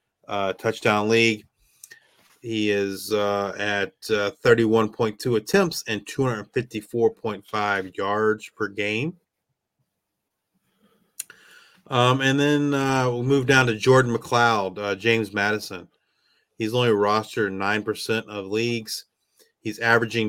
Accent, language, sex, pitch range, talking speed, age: American, English, male, 105-120 Hz, 105 wpm, 30-49